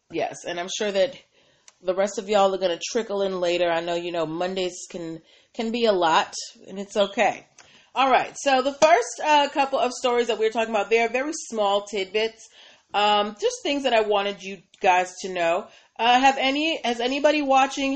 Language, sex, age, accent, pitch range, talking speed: English, female, 30-49, American, 190-245 Hz, 205 wpm